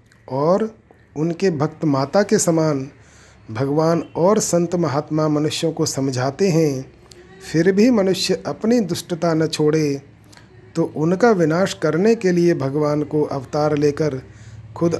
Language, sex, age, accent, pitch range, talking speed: Hindi, male, 50-69, native, 140-170 Hz, 130 wpm